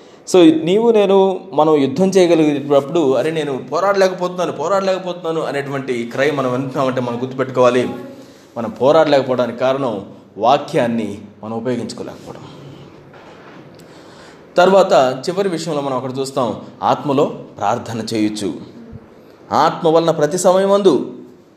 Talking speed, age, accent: 100 wpm, 20-39, native